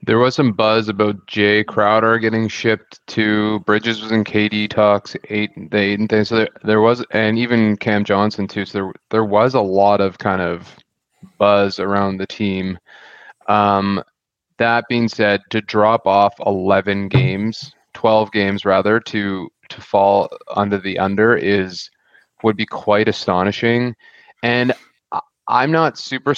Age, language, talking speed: 20-39, English, 155 wpm